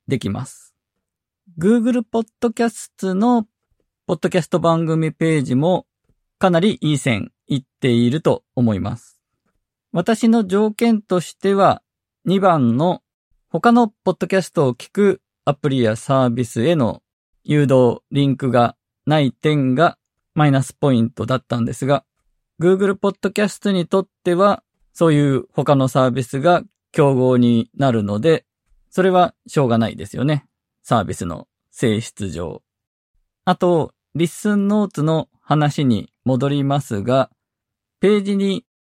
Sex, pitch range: male, 125-185 Hz